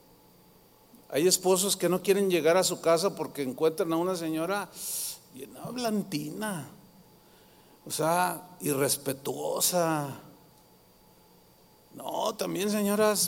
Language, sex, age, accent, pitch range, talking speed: Spanish, male, 50-69, Mexican, 160-210 Hz, 95 wpm